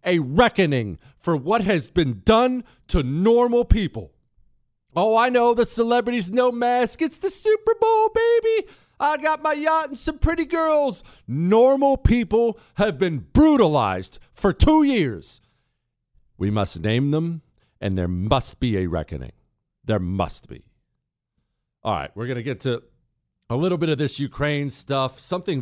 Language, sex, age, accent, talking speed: English, male, 50-69, American, 155 wpm